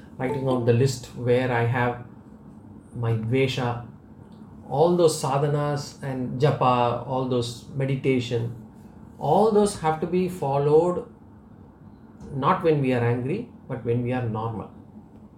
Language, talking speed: English, 130 wpm